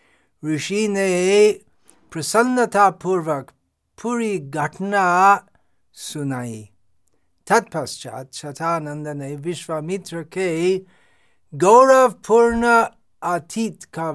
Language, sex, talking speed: Hindi, male, 65 wpm